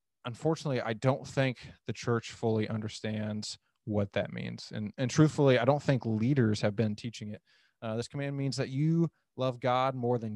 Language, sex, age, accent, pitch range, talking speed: English, male, 20-39, American, 110-125 Hz, 185 wpm